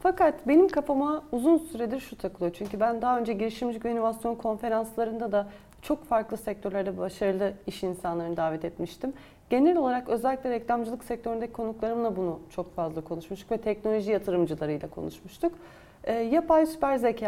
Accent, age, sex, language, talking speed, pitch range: native, 30-49, female, Turkish, 140 wpm, 190-245 Hz